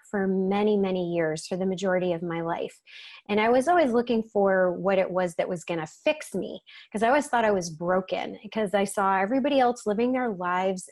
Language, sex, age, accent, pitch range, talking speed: English, female, 30-49, American, 190-250 Hz, 215 wpm